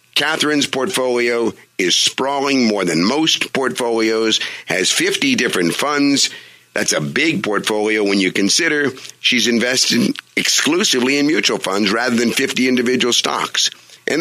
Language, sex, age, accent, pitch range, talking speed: English, male, 50-69, American, 110-150 Hz, 130 wpm